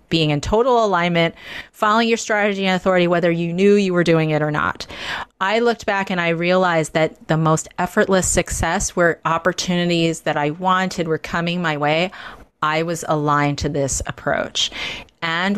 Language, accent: English, American